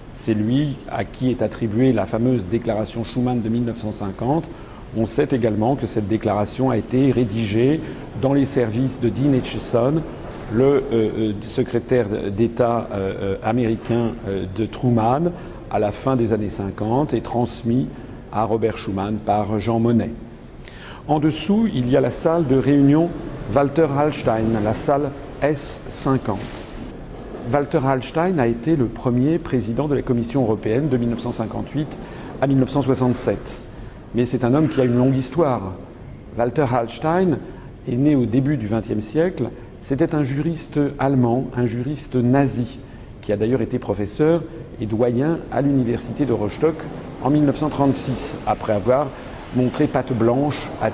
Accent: French